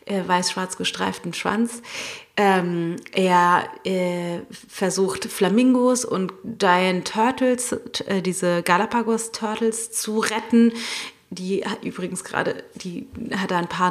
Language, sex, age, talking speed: German, female, 30-49, 120 wpm